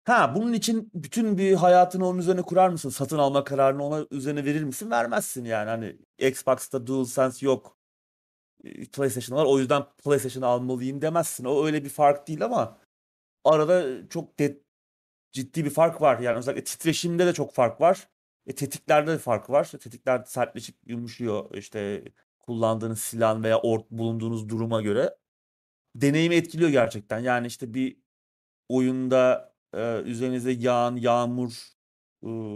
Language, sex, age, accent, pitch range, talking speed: Turkish, male, 30-49, native, 120-145 Hz, 140 wpm